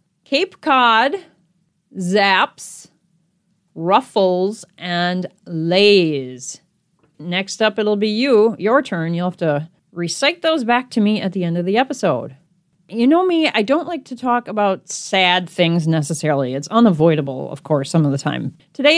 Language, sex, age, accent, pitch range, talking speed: English, female, 30-49, American, 170-260 Hz, 150 wpm